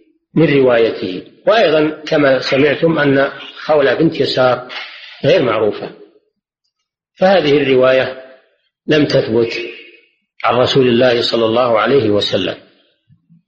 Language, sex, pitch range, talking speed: Arabic, male, 130-210 Hz, 100 wpm